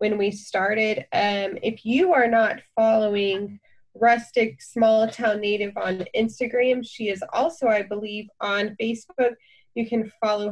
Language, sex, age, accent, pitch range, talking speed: English, female, 20-39, American, 195-230 Hz, 145 wpm